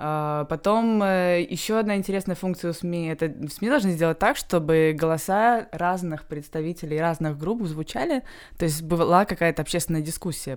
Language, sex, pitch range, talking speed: Russian, female, 145-180 Hz, 140 wpm